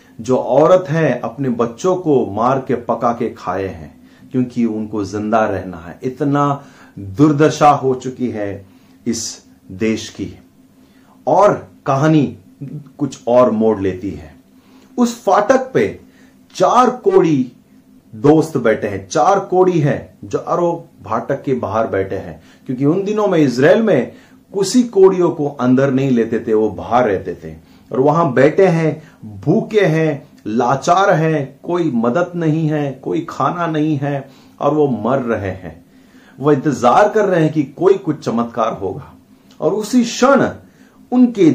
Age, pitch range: 30-49, 115-185 Hz